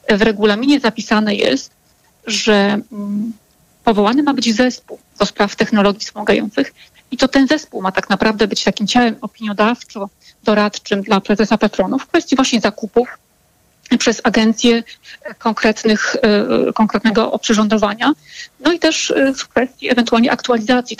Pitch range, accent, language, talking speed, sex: 215-245 Hz, native, Polish, 120 wpm, female